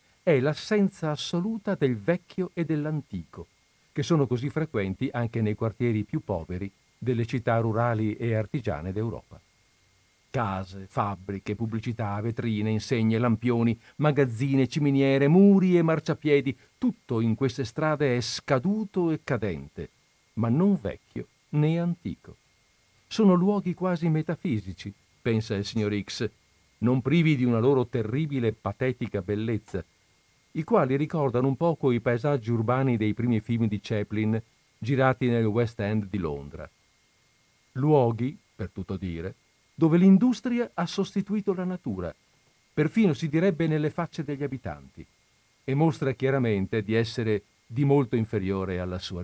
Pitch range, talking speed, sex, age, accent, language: 105-150 Hz, 135 wpm, male, 50-69, native, Italian